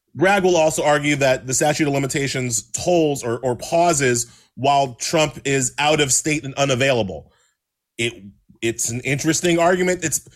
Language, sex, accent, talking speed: English, male, American, 155 wpm